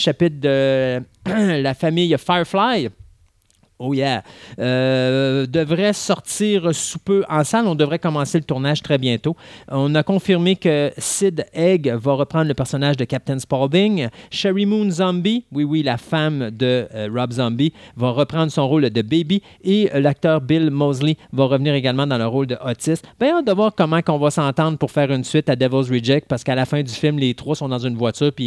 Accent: Canadian